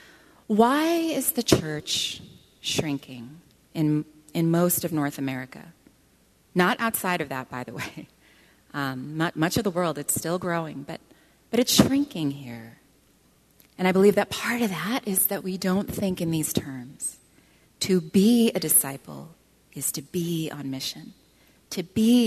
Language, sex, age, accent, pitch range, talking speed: English, female, 30-49, American, 145-210 Hz, 155 wpm